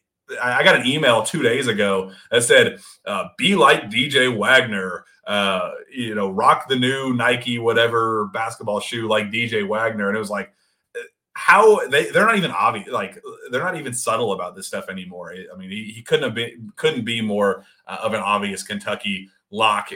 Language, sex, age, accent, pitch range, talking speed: English, male, 30-49, American, 105-125 Hz, 185 wpm